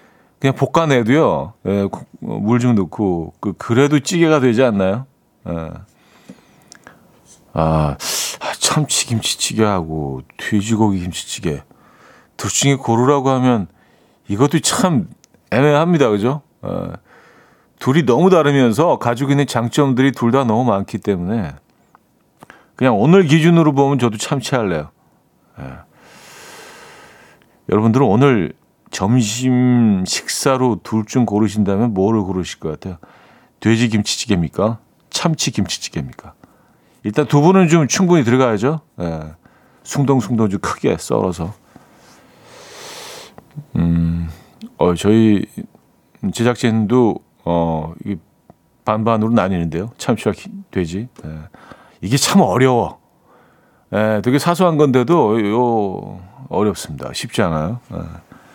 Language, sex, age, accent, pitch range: Korean, male, 40-59, native, 100-140 Hz